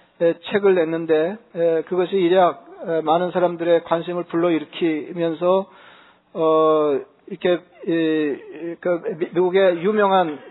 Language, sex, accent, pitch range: Korean, male, native, 165-190 Hz